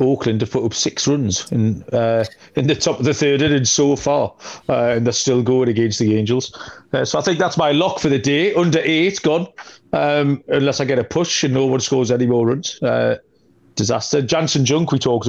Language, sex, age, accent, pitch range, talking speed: English, male, 40-59, British, 120-150 Hz, 225 wpm